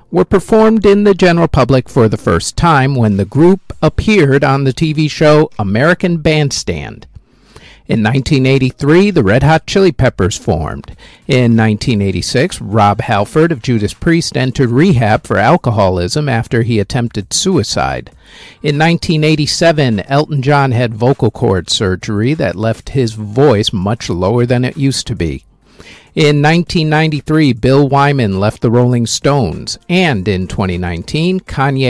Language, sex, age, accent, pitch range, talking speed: English, male, 50-69, American, 110-165 Hz, 135 wpm